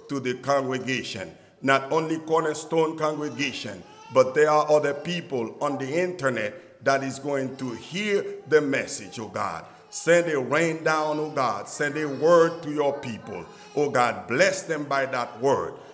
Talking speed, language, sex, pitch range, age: 160 wpm, English, male, 135-175 Hz, 50-69